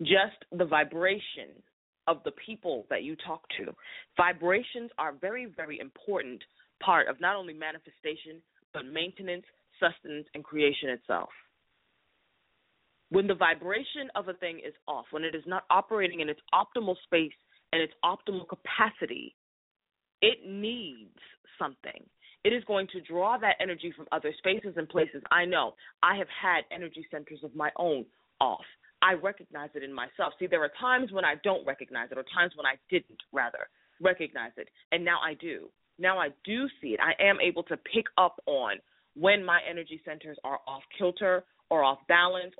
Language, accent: English, American